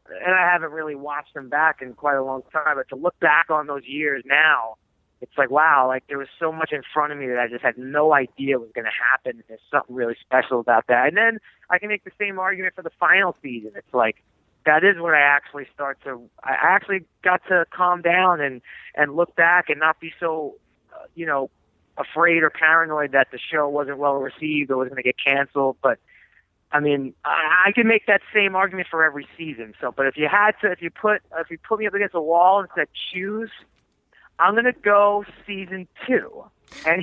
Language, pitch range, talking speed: English, 140-185 Hz, 230 wpm